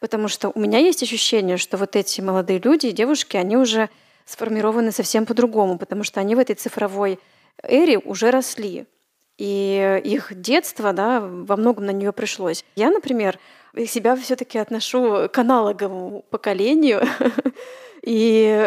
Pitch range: 200-235 Hz